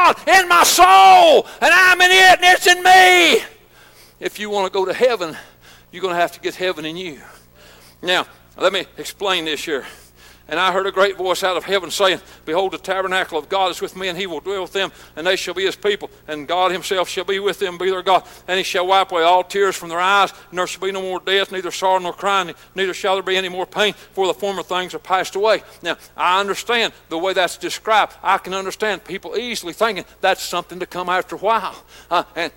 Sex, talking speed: male, 240 wpm